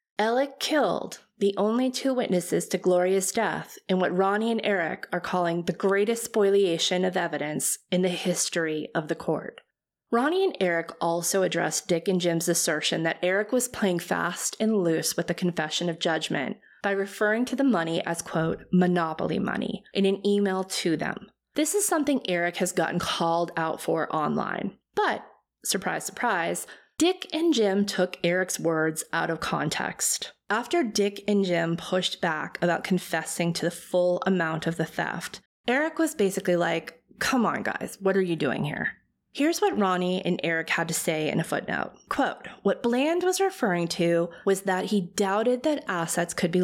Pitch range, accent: 170-205 Hz, American